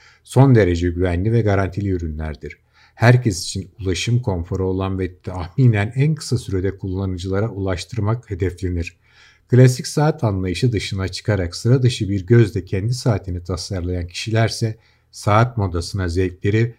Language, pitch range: Turkish, 90-115 Hz